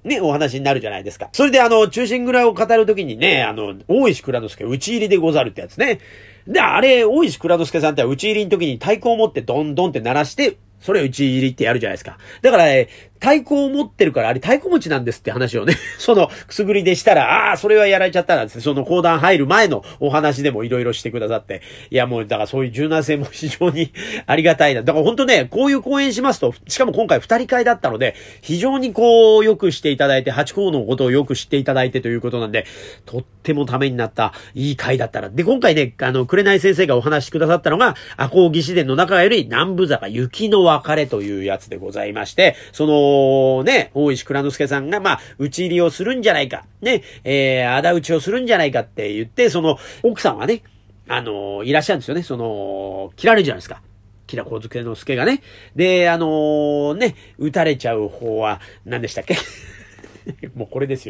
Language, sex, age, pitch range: Japanese, male, 40-59, 130-205 Hz